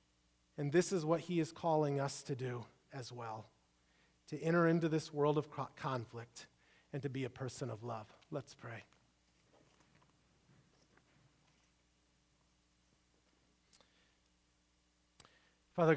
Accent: American